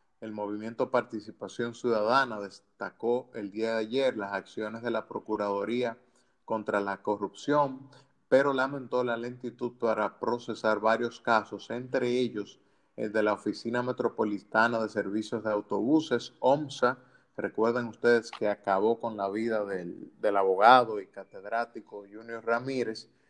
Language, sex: Spanish, male